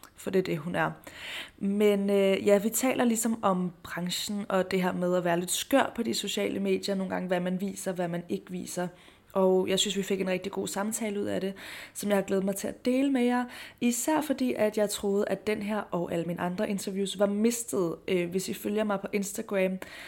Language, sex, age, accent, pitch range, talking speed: Danish, female, 20-39, native, 185-215 Hz, 235 wpm